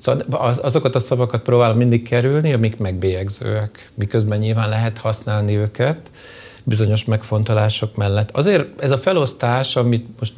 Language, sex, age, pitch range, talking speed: Hungarian, male, 40-59, 105-125 Hz, 135 wpm